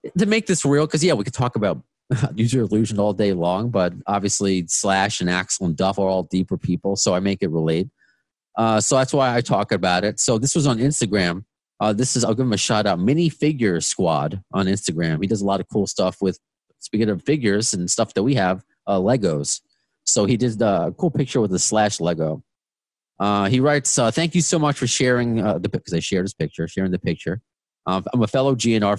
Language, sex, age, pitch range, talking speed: English, male, 30-49, 90-125 Hz, 230 wpm